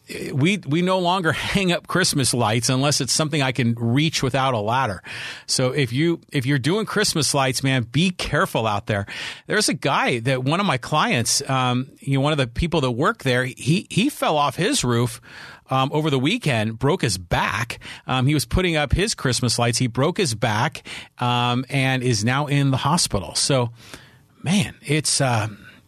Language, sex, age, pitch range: English, male, 40-59, 125-150 Hz